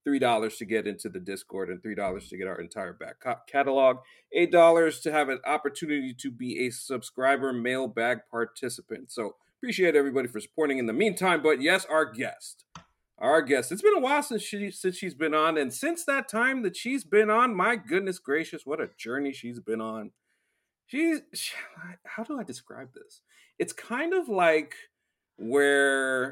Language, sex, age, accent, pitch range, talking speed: English, male, 40-59, American, 135-230 Hz, 170 wpm